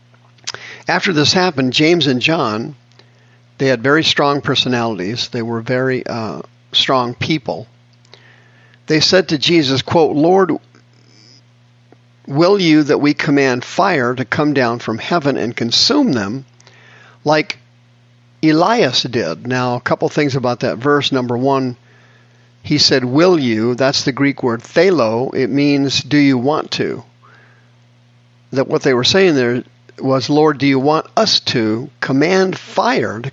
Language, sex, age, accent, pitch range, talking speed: English, male, 50-69, American, 120-150 Hz, 145 wpm